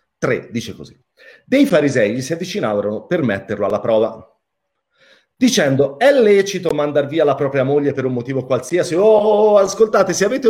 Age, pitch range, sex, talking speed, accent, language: 40-59, 125-185 Hz, male, 160 wpm, native, Italian